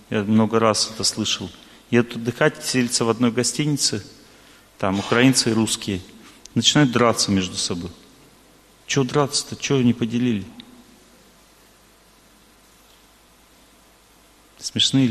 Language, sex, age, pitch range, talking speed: Russian, male, 40-59, 110-130 Hz, 100 wpm